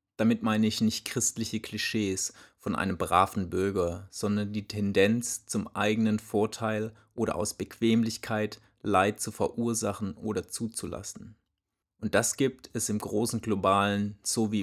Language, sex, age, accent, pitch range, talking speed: German, male, 30-49, German, 100-115 Hz, 130 wpm